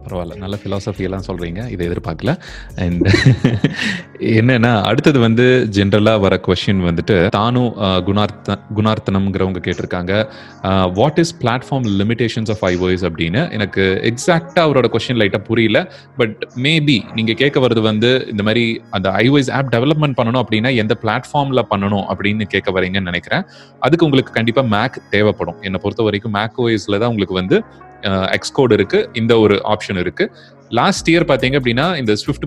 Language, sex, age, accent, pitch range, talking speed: Tamil, male, 30-49, native, 100-125 Hz, 95 wpm